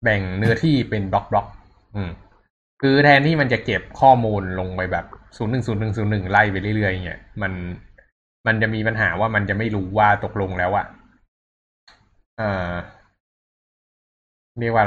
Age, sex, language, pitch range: 20-39, male, Thai, 95-115 Hz